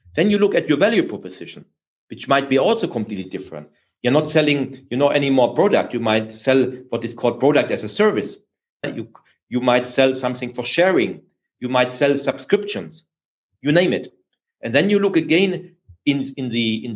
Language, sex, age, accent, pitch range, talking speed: English, male, 40-59, German, 125-175 Hz, 180 wpm